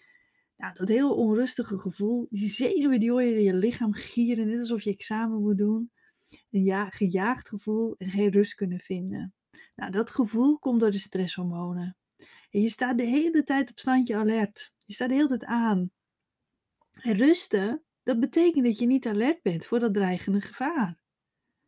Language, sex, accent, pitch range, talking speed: Dutch, female, Dutch, 195-250 Hz, 165 wpm